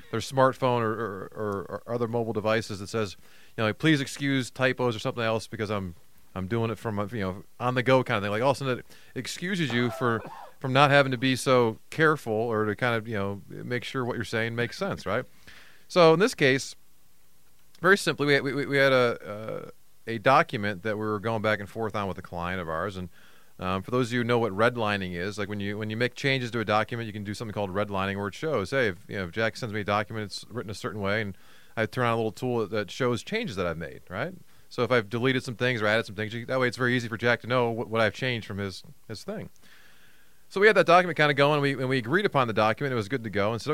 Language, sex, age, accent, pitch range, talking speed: English, male, 30-49, American, 105-130 Hz, 270 wpm